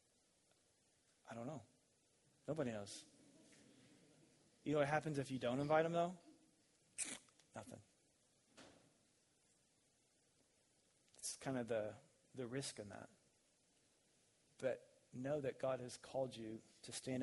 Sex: male